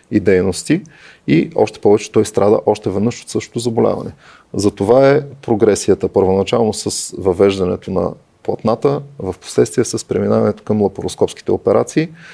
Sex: male